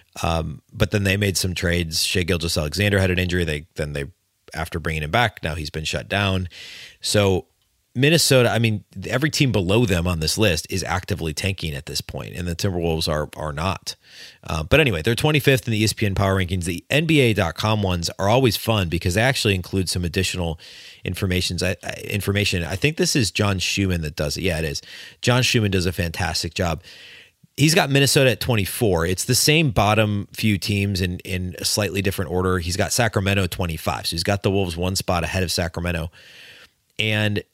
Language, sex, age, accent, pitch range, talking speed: English, male, 30-49, American, 90-110 Hz, 195 wpm